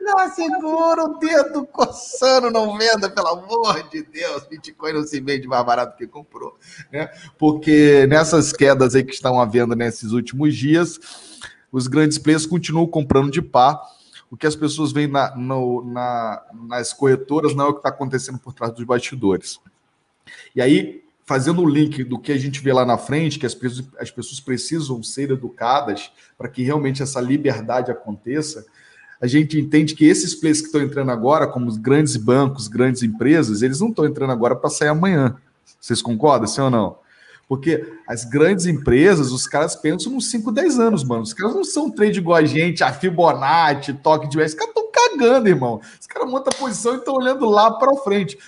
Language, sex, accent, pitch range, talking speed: Portuguese, male, Brazilian, 130-195 Hz, 190 wpm